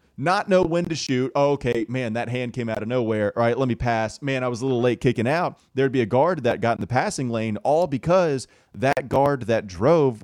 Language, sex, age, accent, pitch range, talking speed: English, male, 30-49, American, 90-125 Hz, 245 wpm